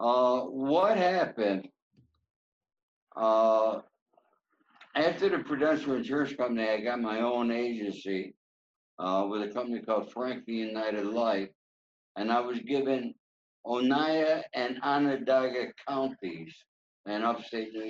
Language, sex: English, male